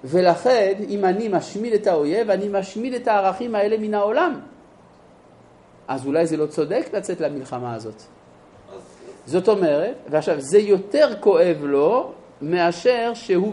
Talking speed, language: 135 wpm, Hebrew